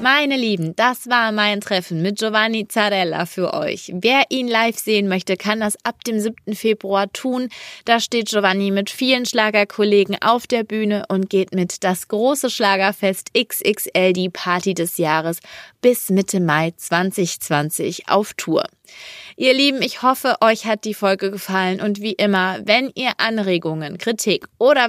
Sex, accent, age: female, German, 20-39